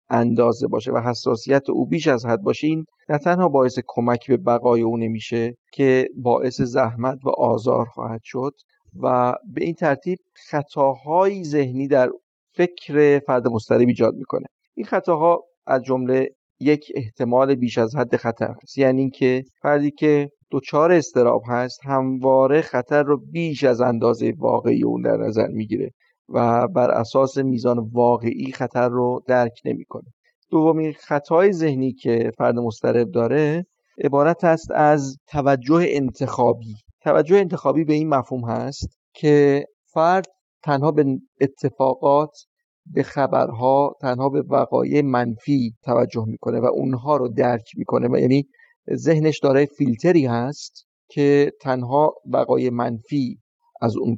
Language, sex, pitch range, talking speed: Persian, male, 125-150 Hz, 135 wpm